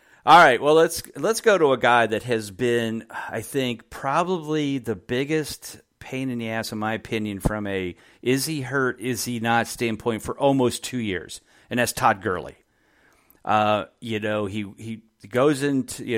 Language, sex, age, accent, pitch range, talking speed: English, male, 40-59, American, 110-140 Hz, 170 wpm